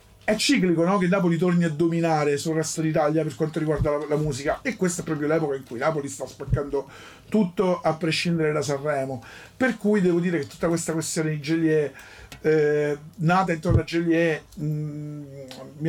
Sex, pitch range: male, 150-180 Hz